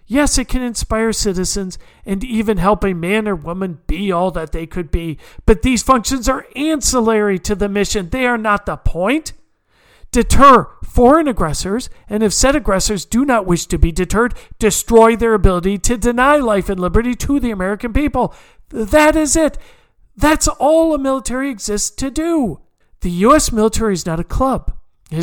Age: 50-69